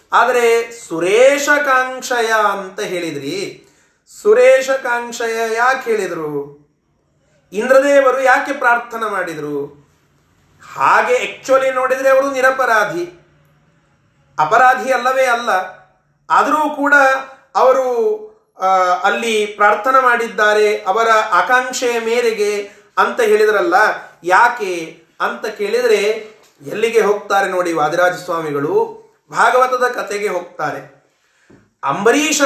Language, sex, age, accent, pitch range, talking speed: Kannada, male, 30-49, native, 205-265 Hz, 80 wpm